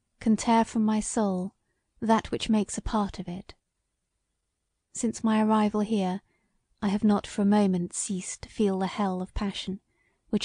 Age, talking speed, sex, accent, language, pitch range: 30-49, 170 wpm, female, British, English, 190-220 Hz